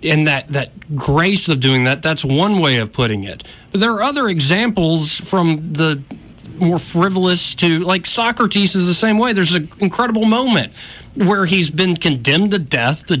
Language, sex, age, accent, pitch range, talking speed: English, male, 40-59, American, 140-195 Hz, 180 wpm